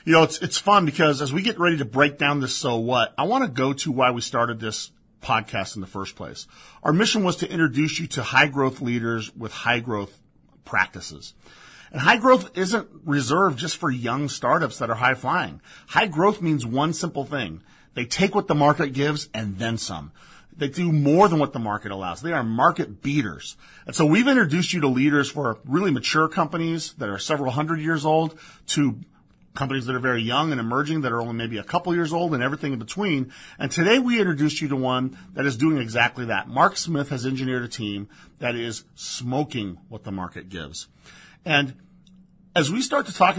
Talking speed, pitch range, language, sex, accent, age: 205 wpm, 115-160 Hz, English, male, American, 40-59